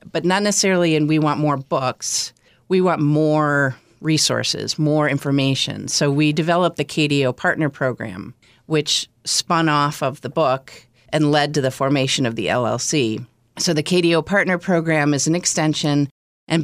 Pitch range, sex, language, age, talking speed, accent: 130-155 Hz, female, English, 40-59, 160 wpm, American